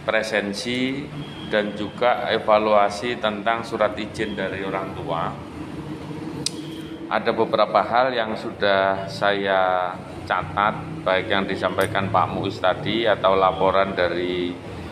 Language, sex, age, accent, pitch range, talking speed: Indonesian, male, 30-49, native, 95-110 Hz, 105 wpm